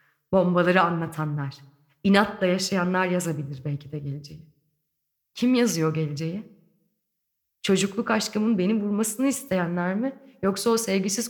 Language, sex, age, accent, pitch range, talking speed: Turkish, female, 30-49, native, 155-200 Hz, 105 wpm